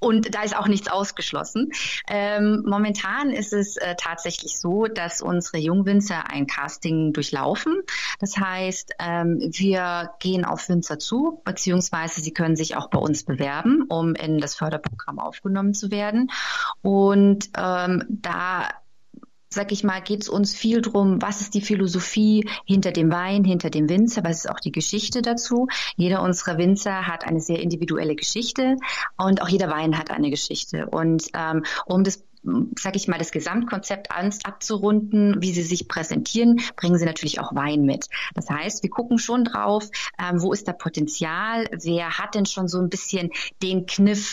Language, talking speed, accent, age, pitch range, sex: German, 165 wpm, German, 30-49, 165-210 Hz, female